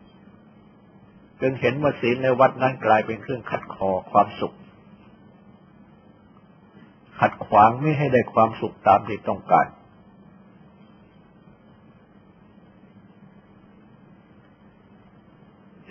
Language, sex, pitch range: Thai, male, 115-150 Hz